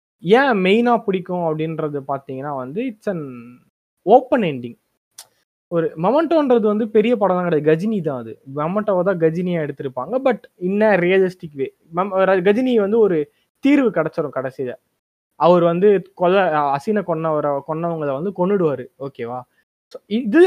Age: 20-39